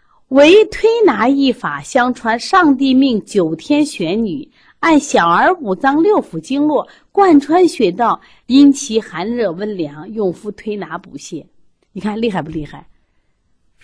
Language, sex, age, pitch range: Chinese, female, 30-49, 180-275 Hz